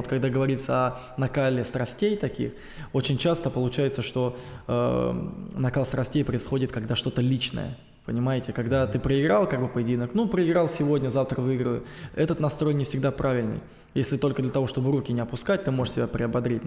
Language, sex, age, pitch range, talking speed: Russian, male, 20-39, 120-135 Hz, 170 wpm